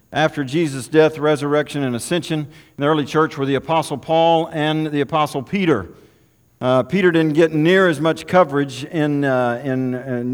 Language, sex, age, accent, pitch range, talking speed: English, male, 50-69, American, 130-160 Hz, 170 wpm